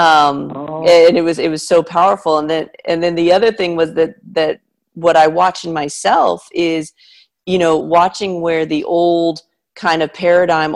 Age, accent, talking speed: 40-59, American, 185 wpm